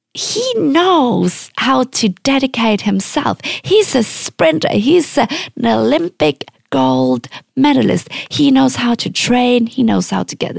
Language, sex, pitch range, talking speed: English, female, 185-265 Hz, 135 wpm